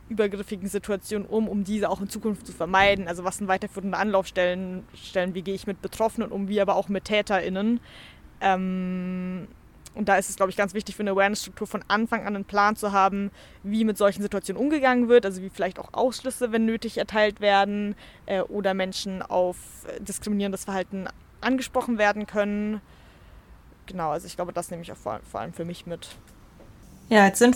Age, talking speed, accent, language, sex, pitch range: 20-39, 190 wpm, German, German, female, 185-210 Hz